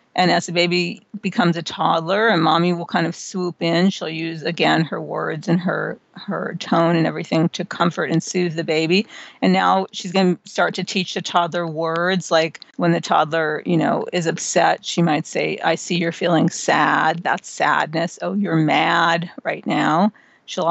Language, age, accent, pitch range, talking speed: English, 40-59, American, 165-190 Hz, 190 wpm